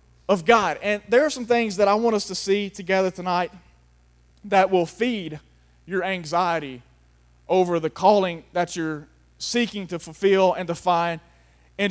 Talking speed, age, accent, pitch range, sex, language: 160 wpm, 30-49, American, 175-250 Hz, male, English